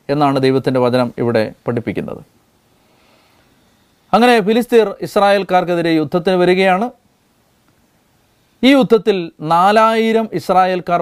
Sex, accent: male, native